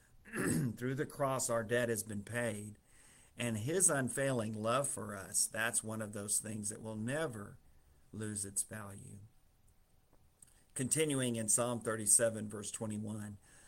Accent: American